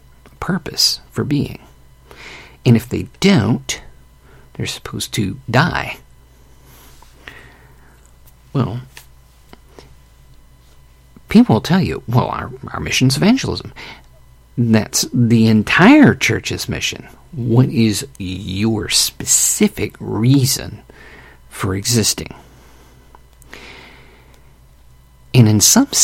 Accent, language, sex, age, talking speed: American, English, male, 50-69, 85 wpm